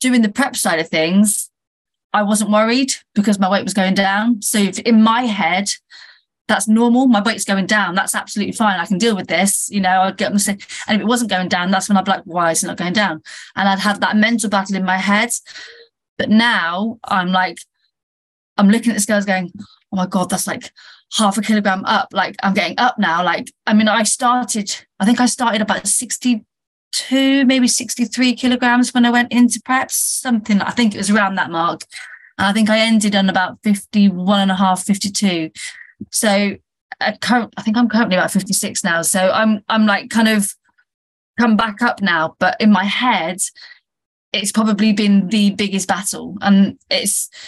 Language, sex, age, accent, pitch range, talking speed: English, female, 30-49, British, 195-230 Hz, 200 wpm